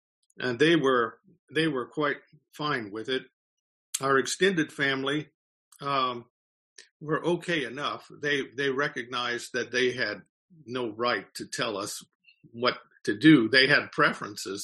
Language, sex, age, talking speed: English, male, 50-69, 135 wpm